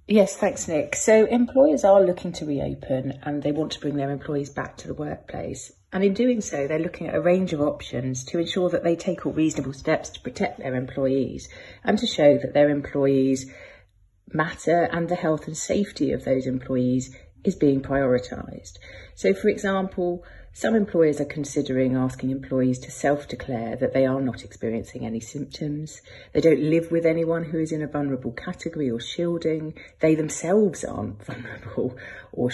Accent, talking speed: British, 180 wpm